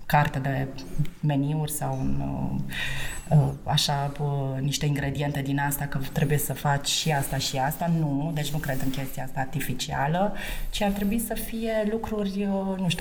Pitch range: 145-170 Hz